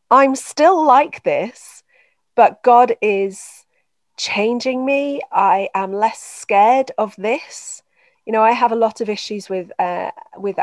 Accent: British